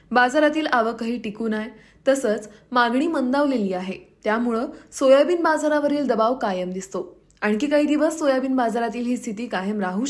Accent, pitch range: native, 200-275 Hz